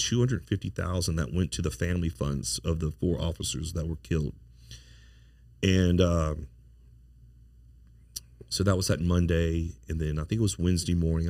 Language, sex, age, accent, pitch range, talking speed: English, male, 40-59, American, 80-95 Hz, 155 wpm